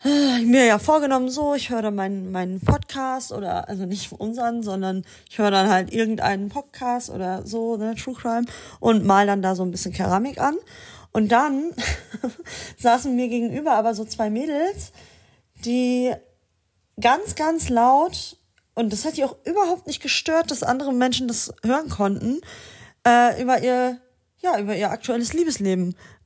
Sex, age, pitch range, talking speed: female, 30-49, 215-265 Hz, 160 wpm